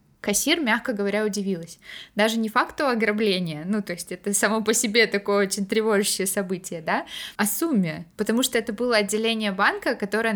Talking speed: 170 wpm